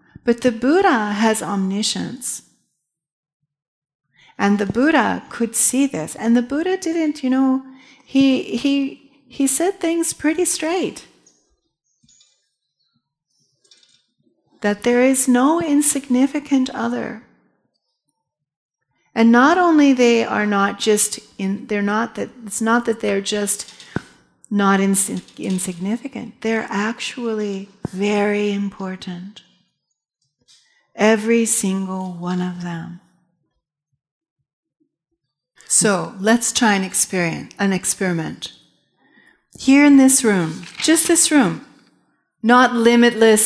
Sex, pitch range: female, 195-270 Hz